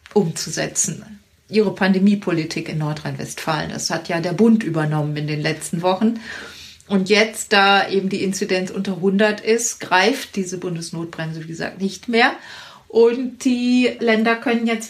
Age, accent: 30-49, German